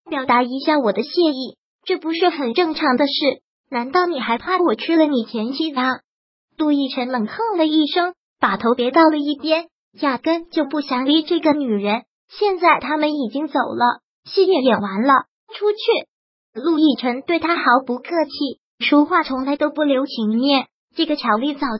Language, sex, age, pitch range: Chinese, male, 20-39, 255-320 Hz